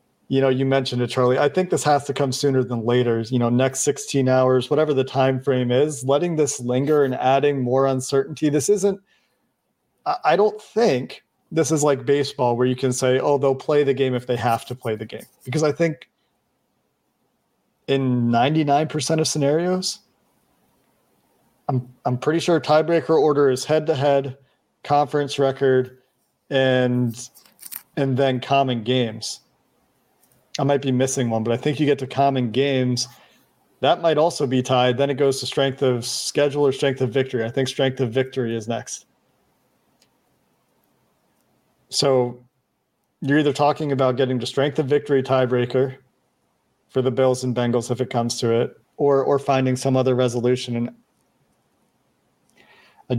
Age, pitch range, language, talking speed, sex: 40-59, 125-145 Hz, English, 160 wpm, male